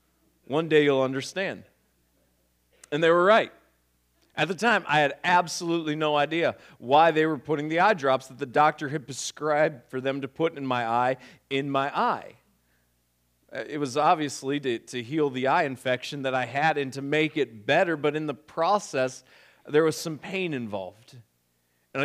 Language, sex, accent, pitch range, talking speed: English, male, American, 115-155 Hz, 175 wpm